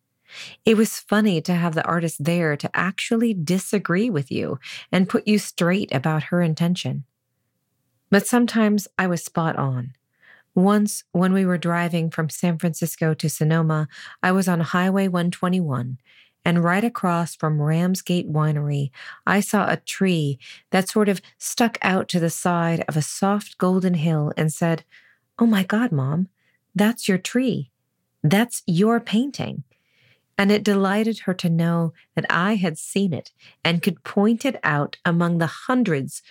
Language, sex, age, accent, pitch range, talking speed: English, female, 40-59, American, 150-195 Hz, 155 wpm